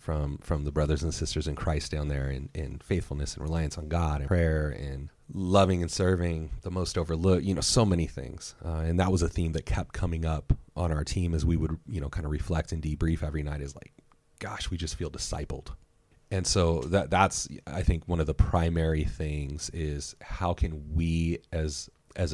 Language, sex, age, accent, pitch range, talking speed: English, male, 30-49, American, 75-90 Hz, 220 wpm